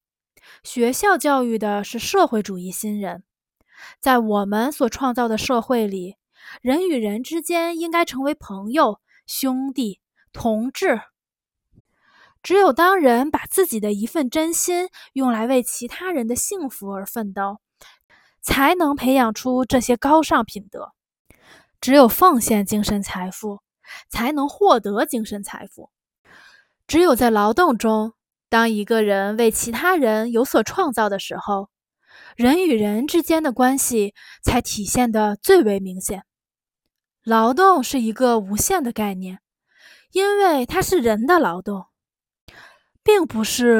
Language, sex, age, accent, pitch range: Chinese, female, 20-39, native, 215-300 Hz